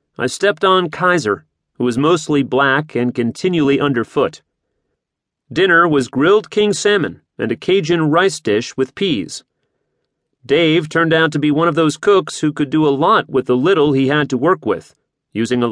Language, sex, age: English, male, 40-59